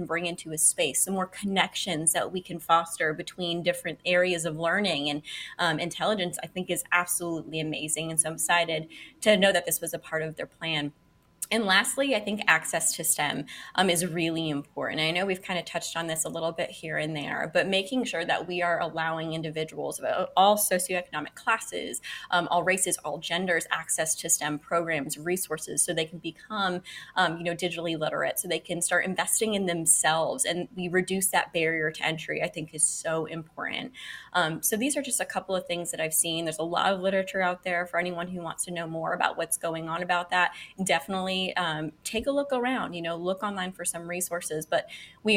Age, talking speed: 20-39, 210 wpm